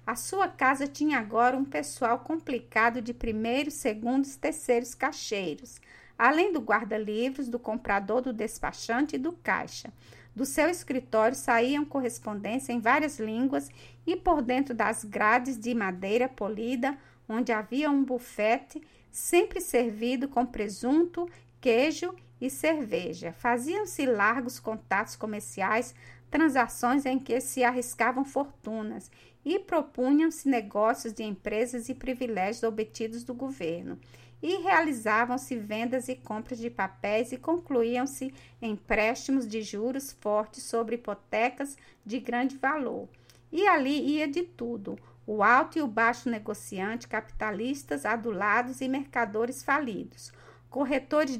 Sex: female